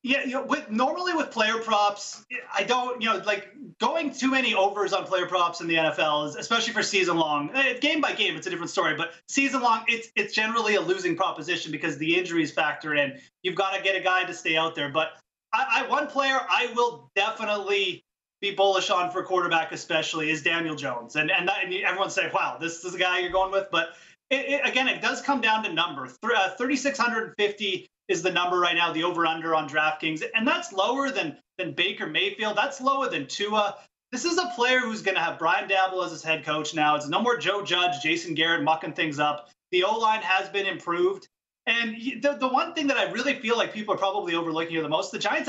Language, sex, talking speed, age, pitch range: English, male, 225 wpm, 30-49, 170-250 Hz